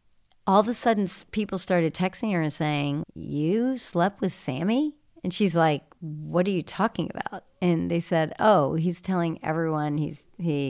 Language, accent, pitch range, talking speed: English, American, 155-205 Hz, 175 wpm